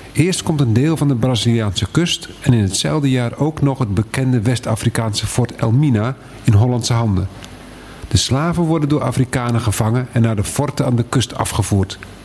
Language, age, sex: Dutch, 50-69, male